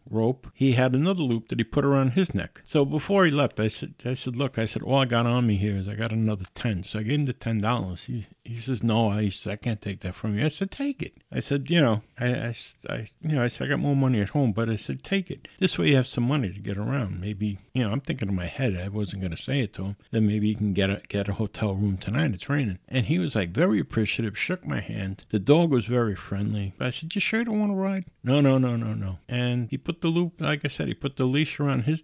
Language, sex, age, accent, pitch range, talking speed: English, male, 50-69, American, 110-155 Hz, 290 wpm